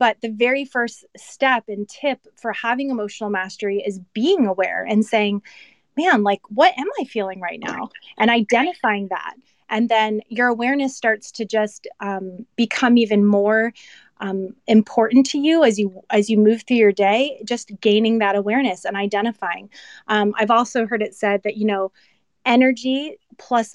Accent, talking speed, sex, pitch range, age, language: American, 170 wpm, female, 205-245 Hz, 30-49, English